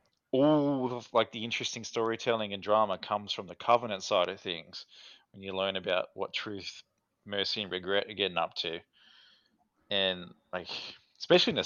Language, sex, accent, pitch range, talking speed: English, male, Australian, 90-115 Hz, 170 wpm